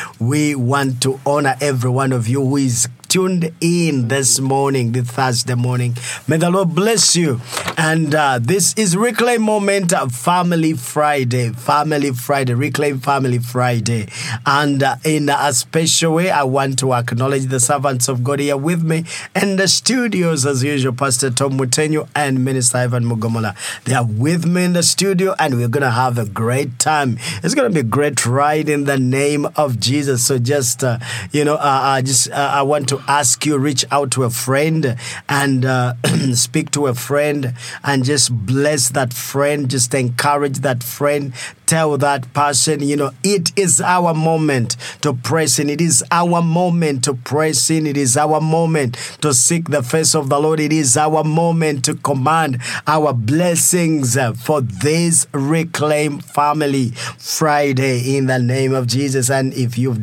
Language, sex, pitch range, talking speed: English, male, 130-155 Hz, 175 wpm